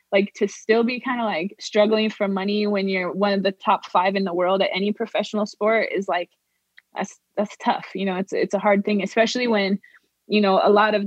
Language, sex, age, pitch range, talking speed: English, female, 20-39, 195-215 Hz, 235 wpm